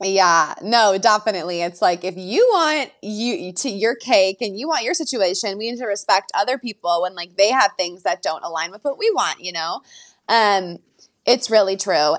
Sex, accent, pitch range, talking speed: female, American, 195-270 Hz, 200 wpm